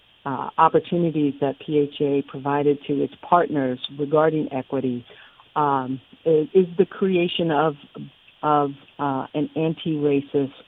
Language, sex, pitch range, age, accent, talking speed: English, female, 140-165 Hz, 50-69, American, 110 wpm